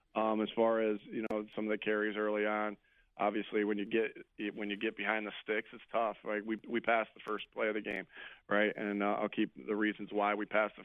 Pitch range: 105-110 Hz